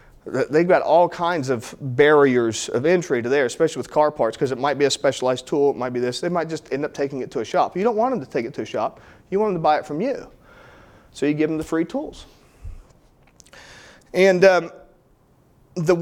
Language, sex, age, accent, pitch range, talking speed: English, male, 40-59, American, 130-175 Hz, 235 wpm